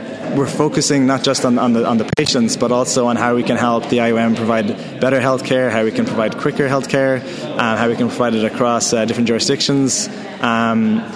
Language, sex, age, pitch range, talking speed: English, male, 20-39, 120-145 Hz, 200 wpm